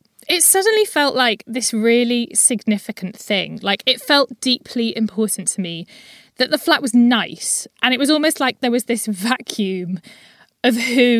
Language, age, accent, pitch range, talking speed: English, 20-39, British, 200-265 Hz, 165 wpm